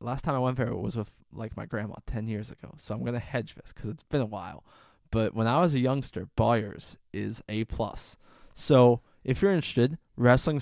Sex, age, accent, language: male, 20-39, American, English